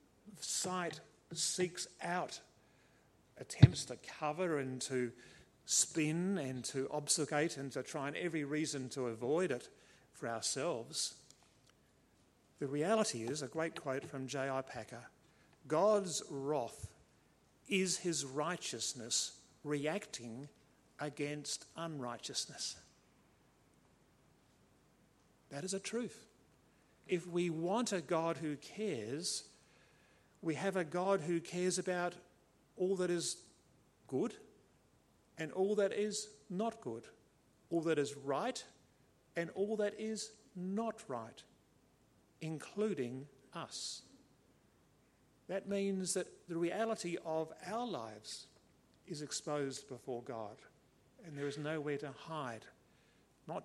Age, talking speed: 50-69, 110 wpm